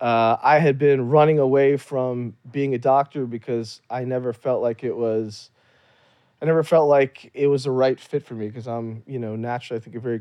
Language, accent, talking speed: English, American, 210 wpm